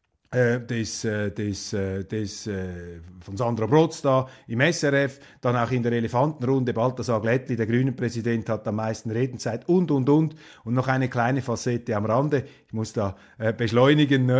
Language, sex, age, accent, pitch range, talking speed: German, male, 50-69, Austrian, 115-145 Hz, 155 wpm